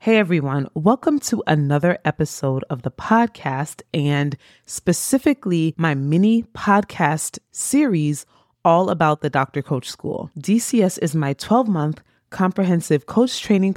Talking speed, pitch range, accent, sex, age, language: 120 wpm, 155-200 Hz, American, female, 30-49, English